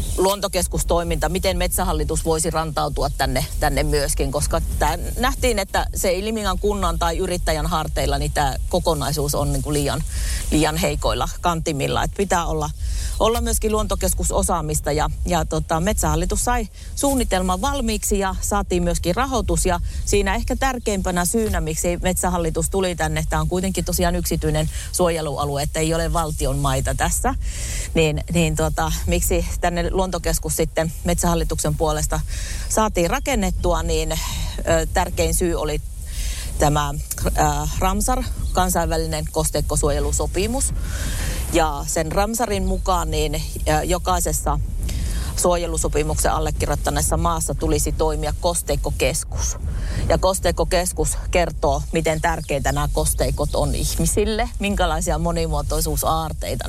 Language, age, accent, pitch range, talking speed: Finnish, 40-59, native, 140-185 Hz, 110 wpm